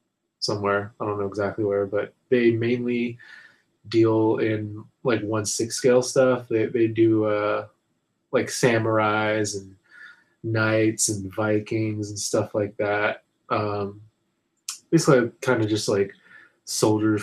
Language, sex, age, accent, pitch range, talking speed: English, male, 20-39, American, 105-115 Hz, 130 wpm